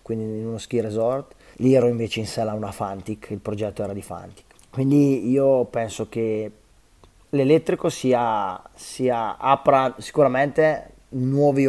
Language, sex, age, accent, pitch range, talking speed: Italian, male, 20-39, native, 105-130 Hz, 140 wpm